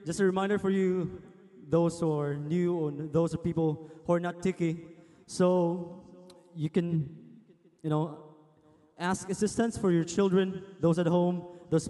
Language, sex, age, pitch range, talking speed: English, male, 20-39, 160-190 Hz, 155 wpm